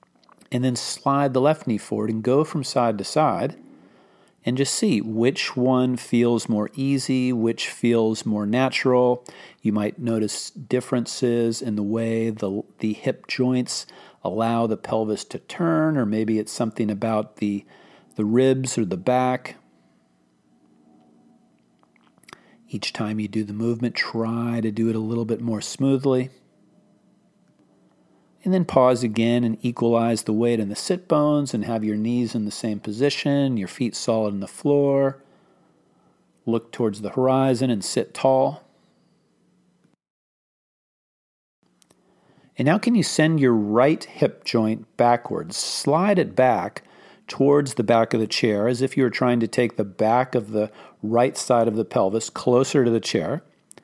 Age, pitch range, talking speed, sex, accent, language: 40-59, 110-130 Hz, 155 wpm, male, American, English